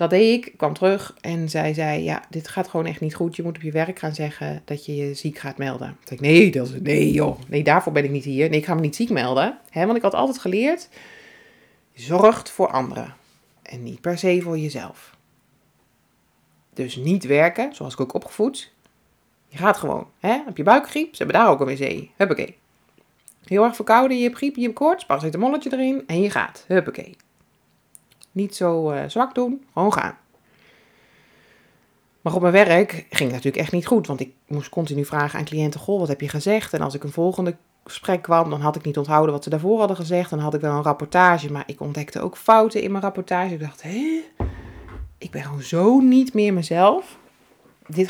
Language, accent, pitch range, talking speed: Dutch, Dutch, 145-195 Hz, 215 wpm